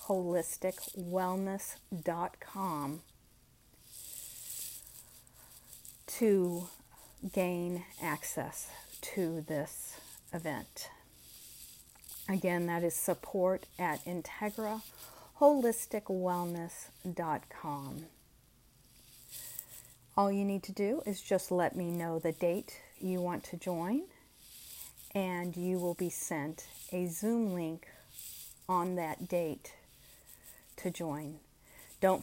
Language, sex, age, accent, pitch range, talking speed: English, female, 40-59, American, 155-185 Hz, 80 wpm